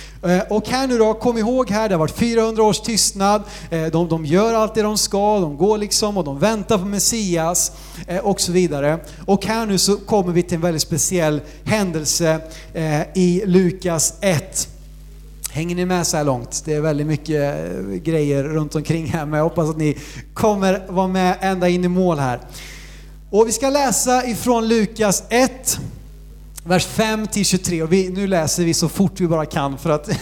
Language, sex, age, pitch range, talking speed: Swedish, male, 30-49, 155-210 Hz, 185 wpm